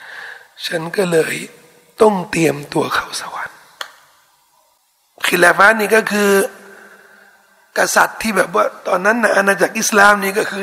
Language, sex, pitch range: Thai, male, 190-250 Hz